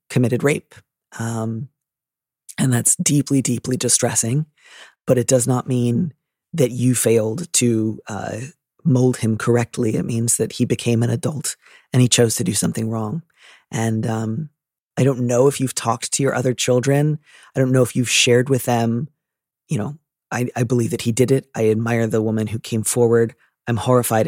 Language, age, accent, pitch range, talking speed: English, 30-49, American, 115-130 Hz, 180 wpm